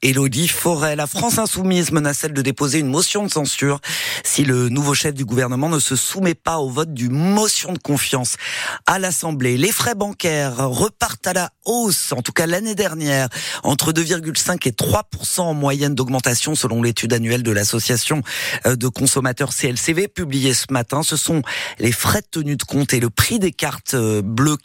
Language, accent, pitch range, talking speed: French, French, 120-160 Hz, 185 wpm